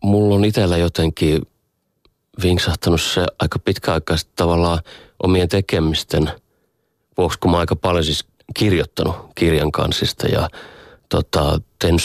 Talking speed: 115 wpm